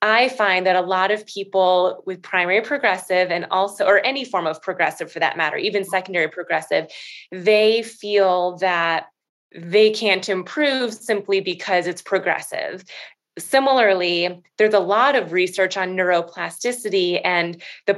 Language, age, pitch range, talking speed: English, 20-39, 175-205 Hz, 145 wpm